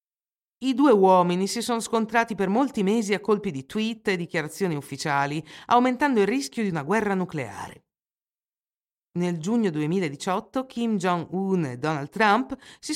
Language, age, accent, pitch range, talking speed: Italian, 50-69, native, 160-225 Hz, 150 wpm